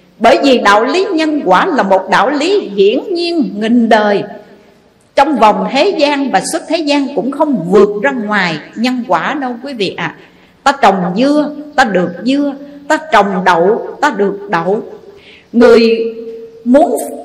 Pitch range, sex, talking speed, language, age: 205-305 Hz, female, 165 wpm, Vietnamese, 50-69